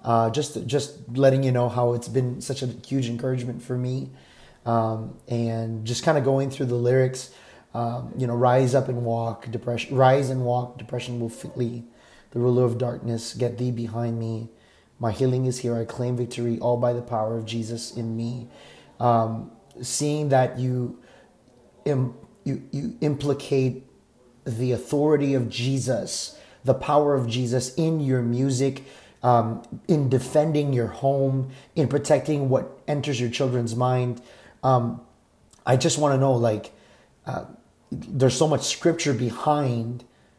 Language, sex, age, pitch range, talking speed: English, male, 30-49, 120-140 Hz, 155 wpm